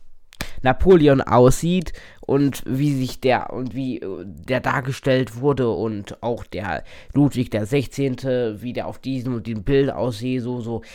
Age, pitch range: 20-39, 110-145 Hz